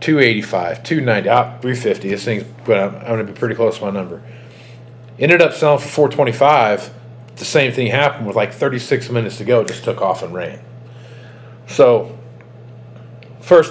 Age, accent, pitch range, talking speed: 40-59, American, 110-125 Hz, 175 wpm